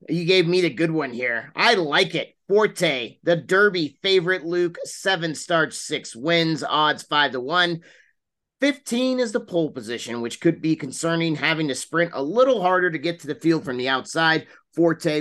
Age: 30-49